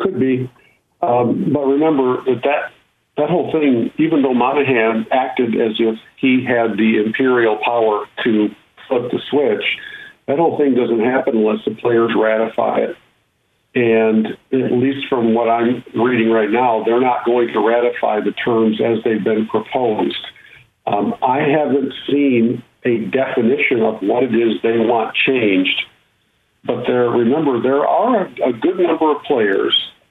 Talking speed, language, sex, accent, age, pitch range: 155 wpm, English, male, American, 50-69, 115-140 Hz